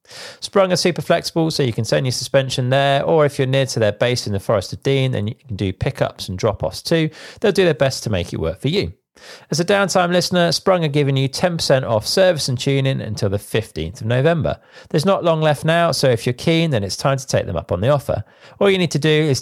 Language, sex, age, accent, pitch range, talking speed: English, male, 40-59, British, 115-160 Hz, 260 wpm